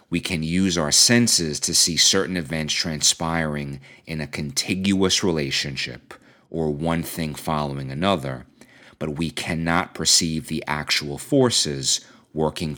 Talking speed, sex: 125 wpm, male